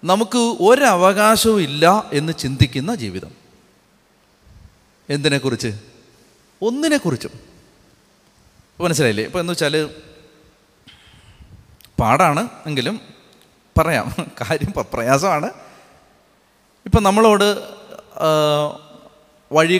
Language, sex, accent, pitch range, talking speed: Malayalam, male, native, 125-180 Hz, 60 wpm